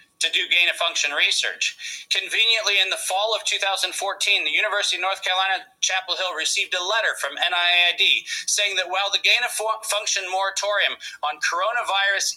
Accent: American